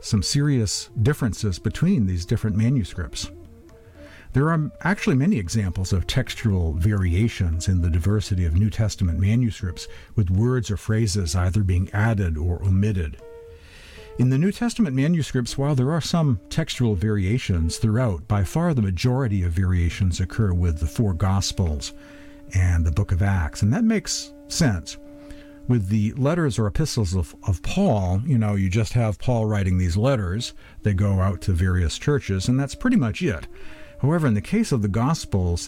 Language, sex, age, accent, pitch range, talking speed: English, male, 50-69, American, 90-115 Hz, 165 wpm